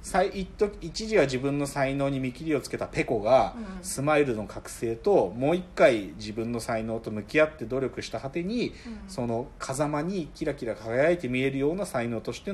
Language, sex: Japanese, male